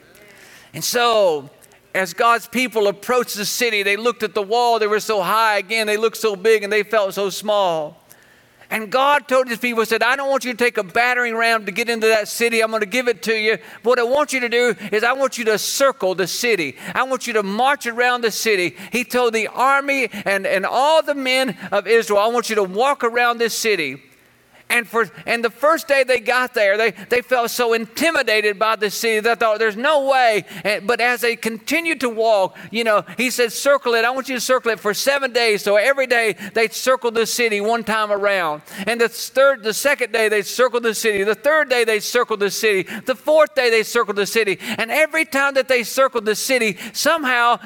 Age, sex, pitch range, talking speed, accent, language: 50-69, male, 210-245 Hz, 230 wpm, American, English